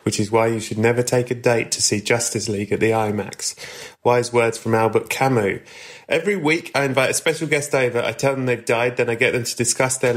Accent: British